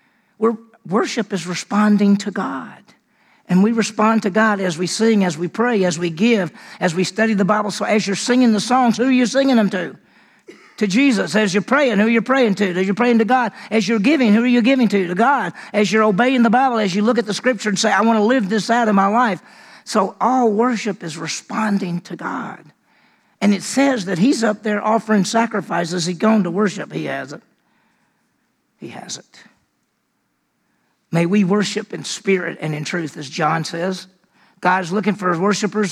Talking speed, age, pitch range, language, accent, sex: 210 wpm, 50-69, 185-225 Hz, English, American, male